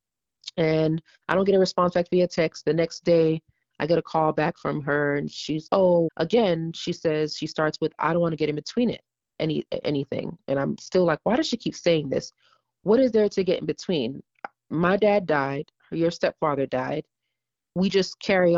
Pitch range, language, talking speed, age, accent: 145-170 Hz, English, 205 wpm, 30-49, American